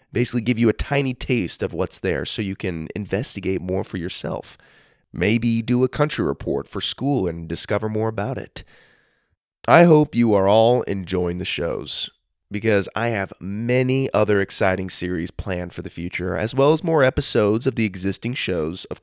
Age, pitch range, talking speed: 20-39, 95-130 Hz, 180 wpm